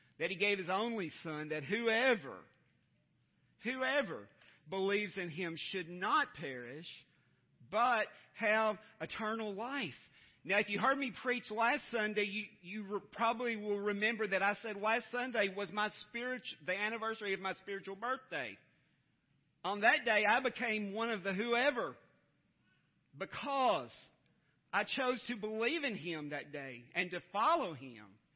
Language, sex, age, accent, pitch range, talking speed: English, male, 40-59, American, 160-215 Hz, 145 wpm